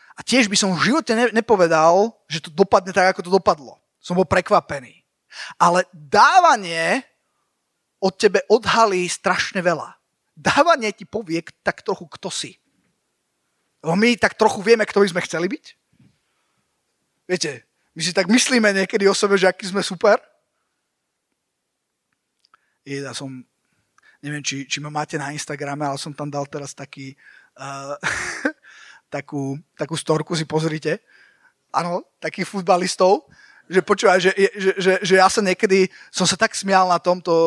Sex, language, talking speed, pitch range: male, Slovak, 150 wpm, 155-200 Hz